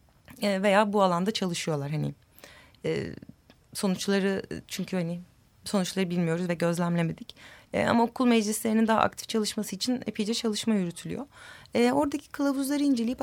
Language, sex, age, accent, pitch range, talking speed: Turkish, female, 30-49, native, 200-245 Hz, 115 wpm